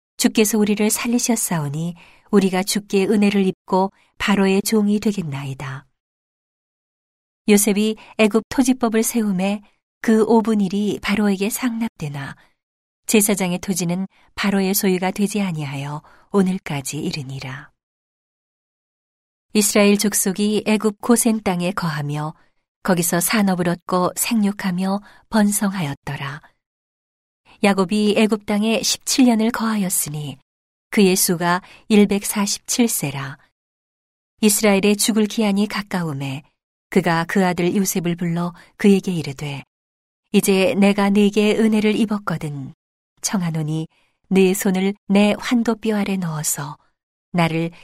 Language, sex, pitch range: Korean, female, 170-210 Hz